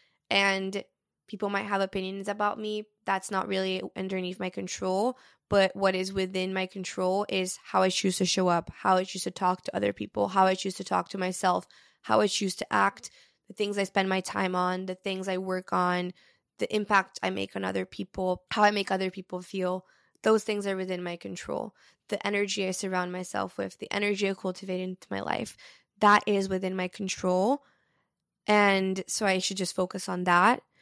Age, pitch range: 20-39, 185-205 Hz